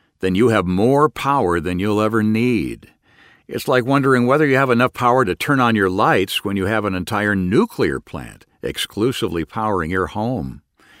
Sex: male